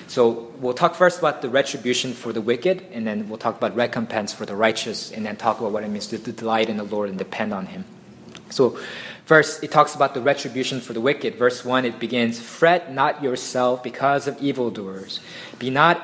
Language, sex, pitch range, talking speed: English, male, 115-140 Hz, 215 wpm